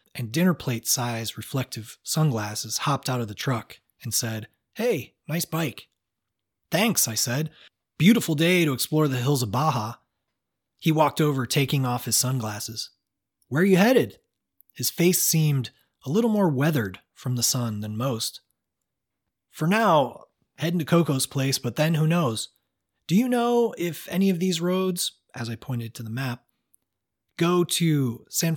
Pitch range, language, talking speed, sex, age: 115-160 Hz, English, 160 wpm, male, 30-49